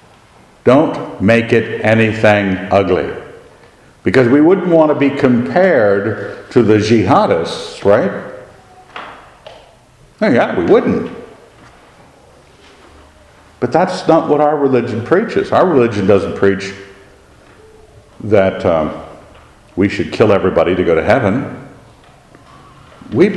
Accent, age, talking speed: American, 60-79, 110 wpm